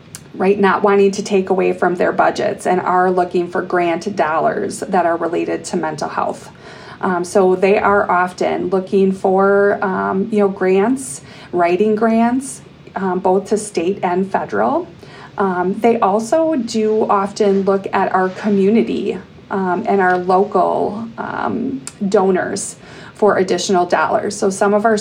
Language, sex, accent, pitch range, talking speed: English, female, American, 185-210 Hz, 150 wpm